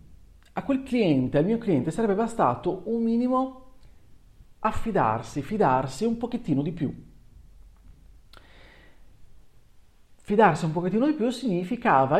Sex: male